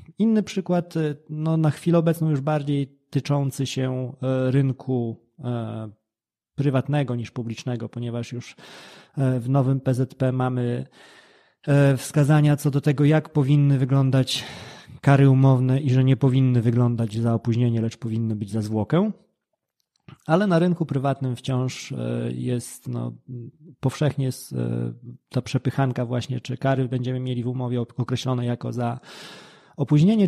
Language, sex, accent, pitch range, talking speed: Polish, male, native, 120-145 Hz, 120 wpm